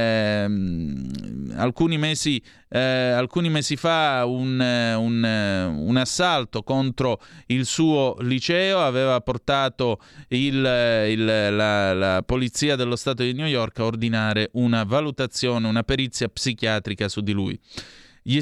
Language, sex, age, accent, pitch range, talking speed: Italian, male, 30-49, native, 115-150 Hz, 105 wpm